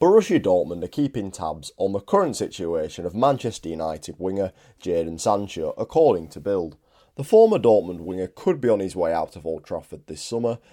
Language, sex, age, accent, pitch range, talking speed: English, male, 30-49, British, 80-115 Hz, 185 wpm